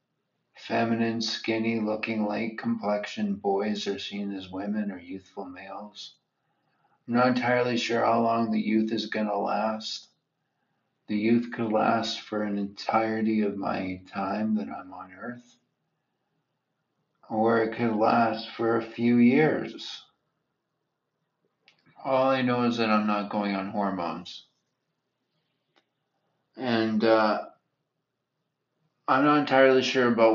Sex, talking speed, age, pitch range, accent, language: male, 125 wpm, 50-69, 100-115 Hz, American, English